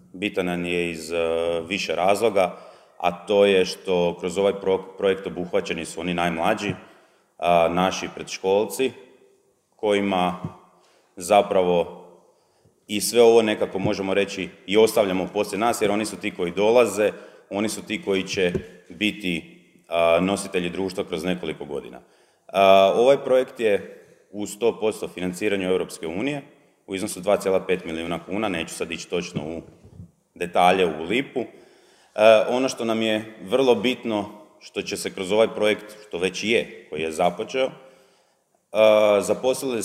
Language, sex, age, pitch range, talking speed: Croatian, male, 30-49, 90-105 Hz, 145 wpm